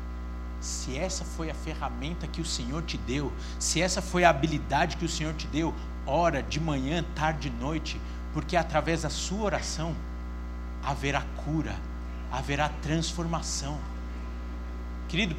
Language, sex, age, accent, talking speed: Portuguese, male, 60-79, Brazilian, 140 wpm